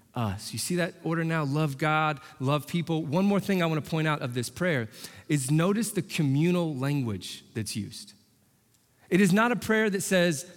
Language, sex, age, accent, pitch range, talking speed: English, male, 30-49, American, 125-190 Hz, 195 wpm